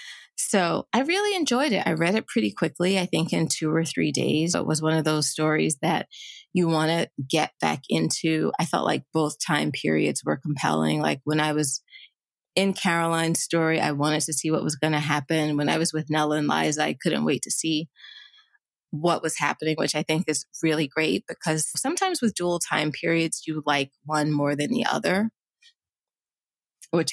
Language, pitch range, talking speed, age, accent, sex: English, 150-190 Hz, 195 wpm, 20-39, American, female